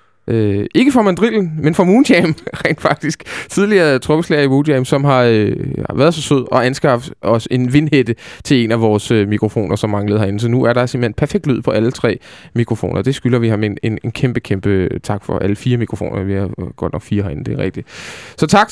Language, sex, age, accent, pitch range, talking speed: Danish, male, 20-39, native, 115-160 Hz, 220 wpm